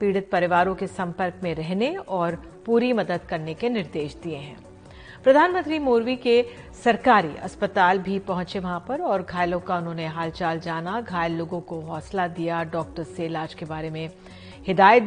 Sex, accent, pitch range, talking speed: female, native, 180-235 Hz, 165 wpm